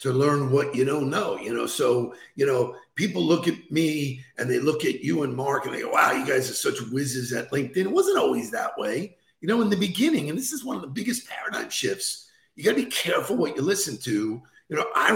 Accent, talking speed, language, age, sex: American, 250 wpm, English, 50-69, male